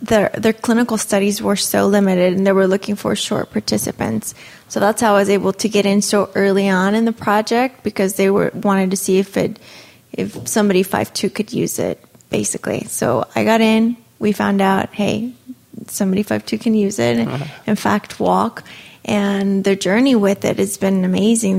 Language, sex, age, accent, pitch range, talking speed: English, female, 20-39, American, 190-215 Hz, 195 wpm